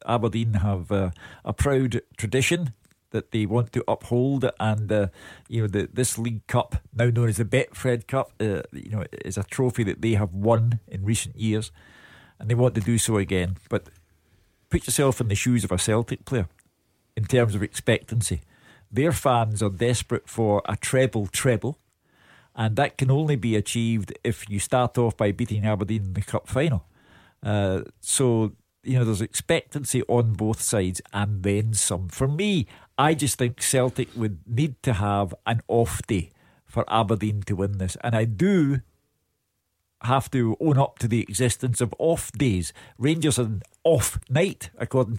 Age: 50-69